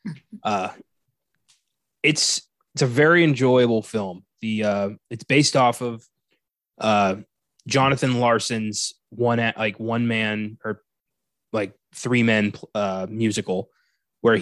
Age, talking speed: 20-39, 115 wpm